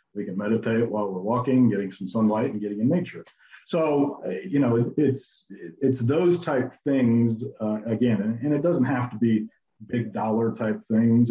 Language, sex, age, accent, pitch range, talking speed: English, male, 50-69, American, 110-130 Hz, 180 wpm